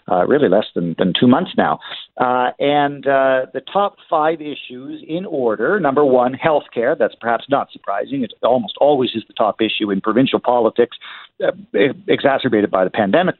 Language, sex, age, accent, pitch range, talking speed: English, male, 50-69, American, 115-145 Hz, 180 wpm